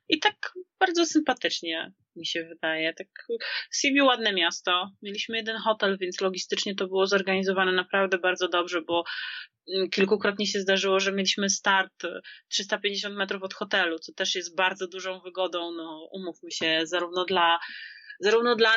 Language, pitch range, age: Polish, 170-205 Hz, 30-49